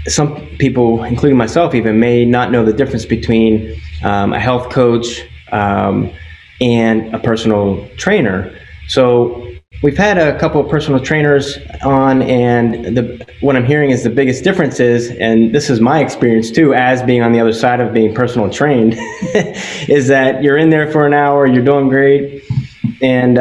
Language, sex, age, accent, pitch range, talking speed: English, male, 20-39, American, 110-135 Hz, 170 wpm